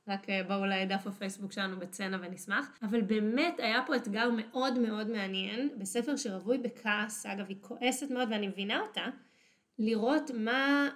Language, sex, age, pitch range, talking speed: Hebrew, female, 20-39, 200-250 Hz, 155 wpm